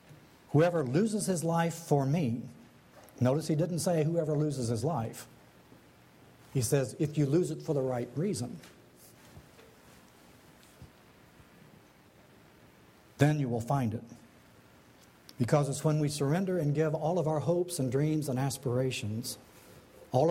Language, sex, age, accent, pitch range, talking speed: English, male, 60-79, American, 120-155 Hz, 135 wpm